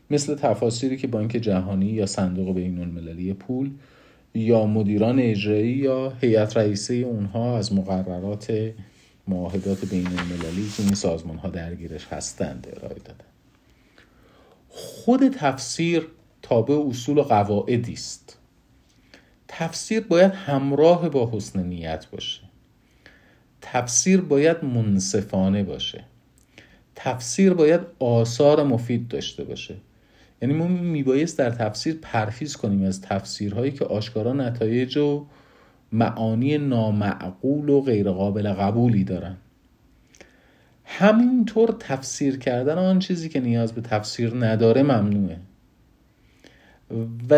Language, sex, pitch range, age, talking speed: Persian, male, 100-140 Hz, 50-69, 105 wpm